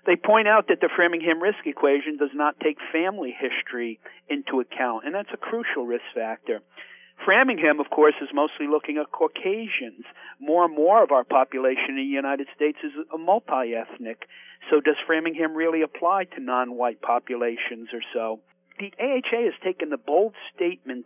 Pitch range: 130-175 Hz